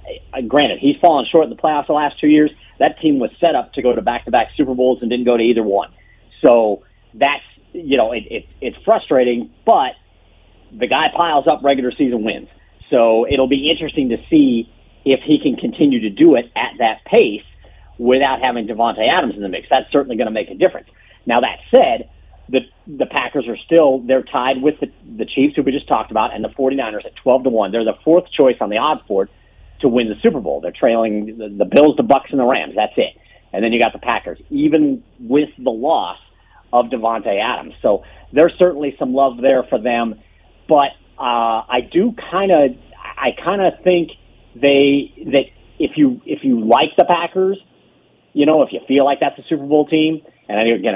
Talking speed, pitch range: 210 wpm, 115-155 Hz